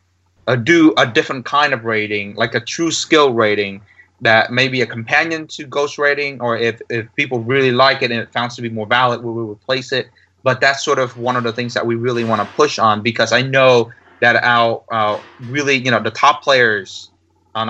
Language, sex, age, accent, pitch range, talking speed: English, male, 20-39, American, 110-130 Hz, 225 wpm